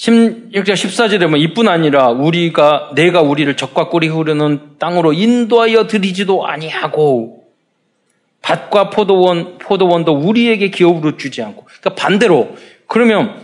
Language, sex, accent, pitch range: Korean, male, native, 140-215 Hz